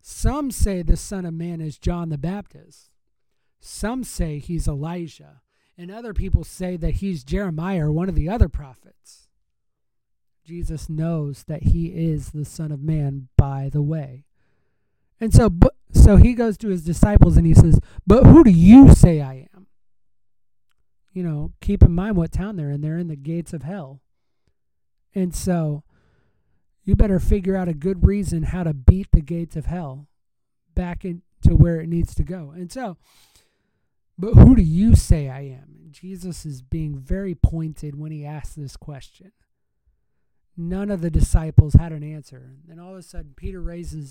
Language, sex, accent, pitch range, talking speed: English, male, American, 145-180 Hz, 175 wpm